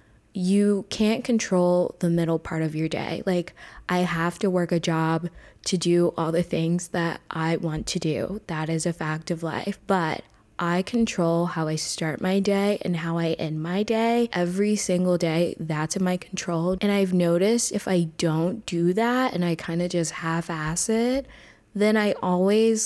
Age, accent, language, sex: 20-39, American, English, female